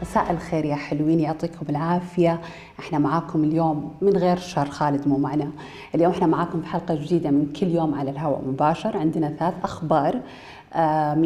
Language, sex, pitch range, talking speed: Arabic, female, 150-180 Hz, 165 wpm